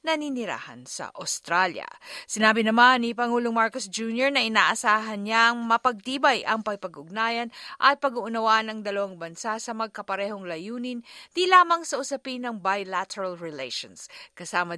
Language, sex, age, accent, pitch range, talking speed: Filipino, female, 50-69, native, 185-240 Hz, 125 wpm